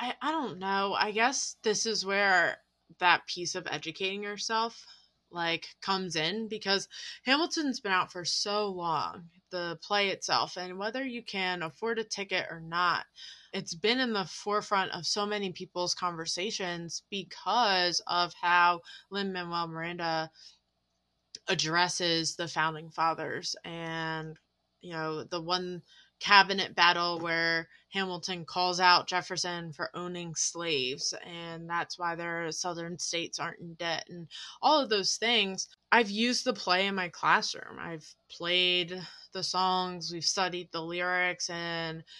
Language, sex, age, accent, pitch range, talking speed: English, female, 20-39, American, 165-195 Hz, 140 wpm